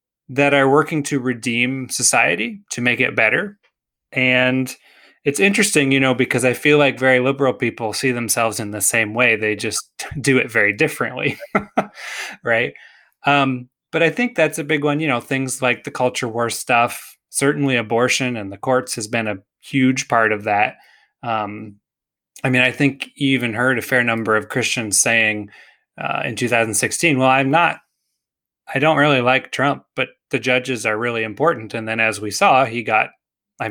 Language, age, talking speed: English, 20-39, 180 wpm